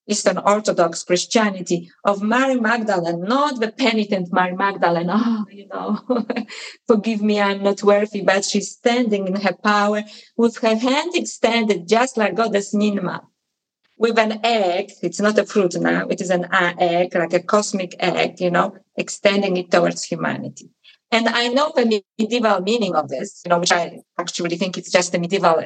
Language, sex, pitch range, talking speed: English, female, 175-220 Hz, 170 wpm